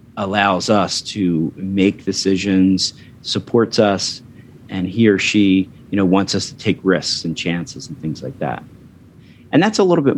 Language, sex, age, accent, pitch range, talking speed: English, male, 40-59, American, 95-115 Hz, 170 wpm